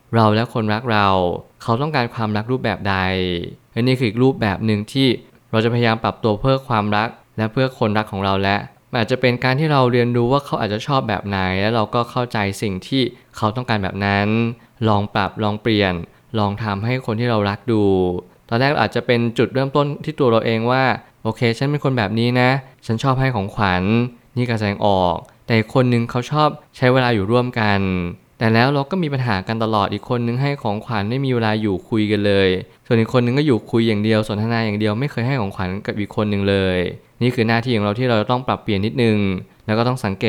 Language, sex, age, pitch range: Thai, male, 20-39, 105-125 Hz